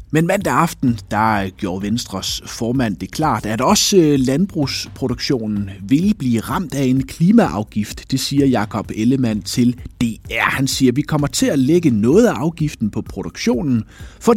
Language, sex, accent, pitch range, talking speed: Danish, male, native, 100-150 Hz, 160 wpm